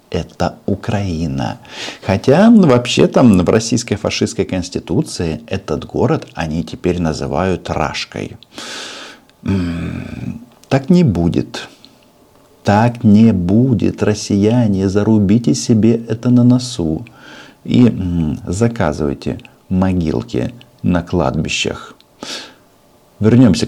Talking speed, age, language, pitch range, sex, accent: 90 wpm, 50-69, Russian, 85-115 Hz, male, native